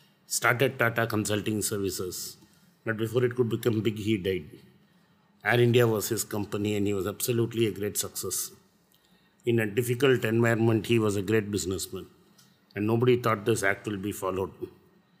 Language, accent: Tamil, native